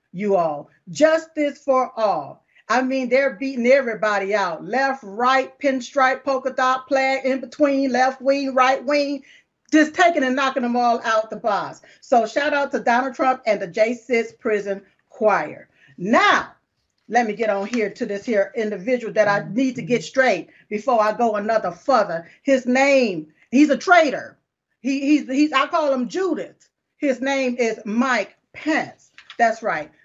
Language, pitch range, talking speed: English, 215-270 Hz, 165 wpm